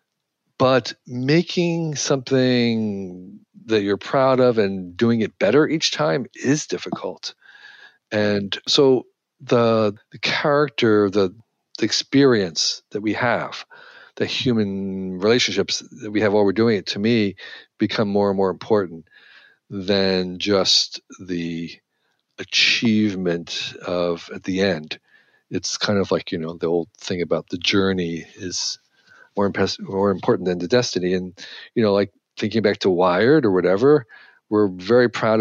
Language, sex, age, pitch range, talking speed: English, male, 50-69, 95-120 Hz, 140 wpm